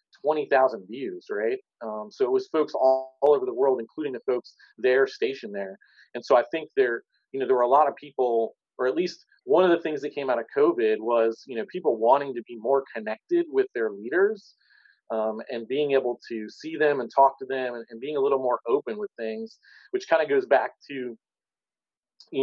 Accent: American